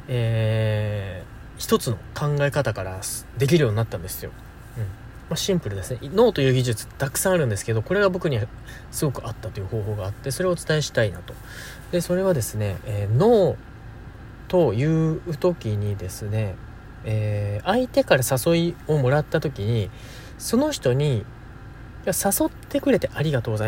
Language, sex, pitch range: Japanese, male, 110-175 Hz